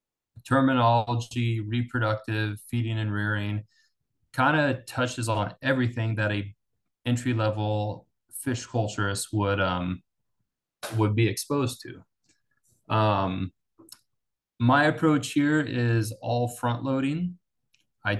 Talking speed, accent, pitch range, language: 95 wpm, American, 110-125 Hz, English